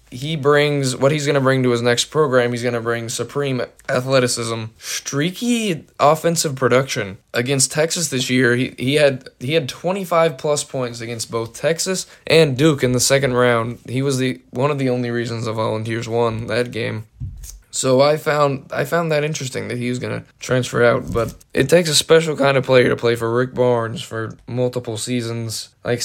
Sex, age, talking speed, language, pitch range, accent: male, 10-29, 195 wpm, English, 115-140 Hz, American